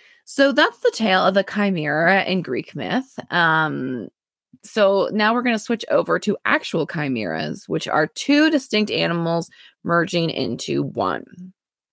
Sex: female